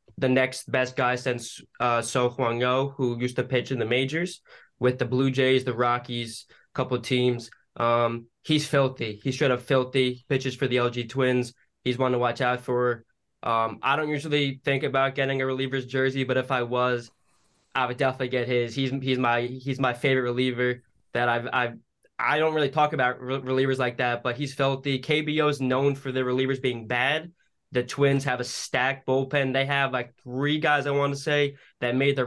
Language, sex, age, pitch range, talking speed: English, male, 10-29, 125-135 Hz, 205 wpm